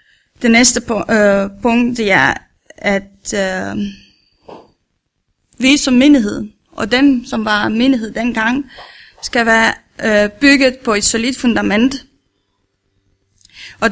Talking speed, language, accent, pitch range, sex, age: 115 wpm, Danish, native, 210-250 Hz, female, 30-49